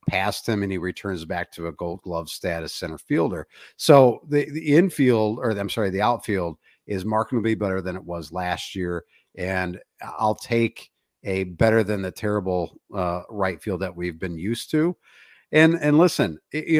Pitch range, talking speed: 95-150 Hz, 180 wpm